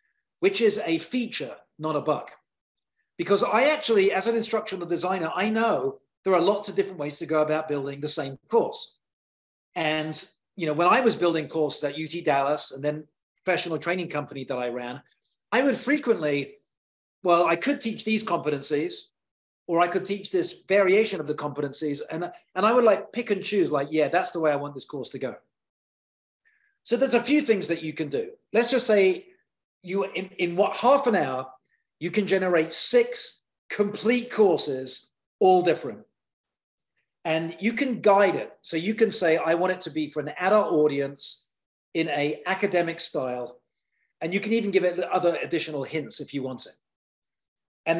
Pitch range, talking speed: 155-225 Hz, 185 wpm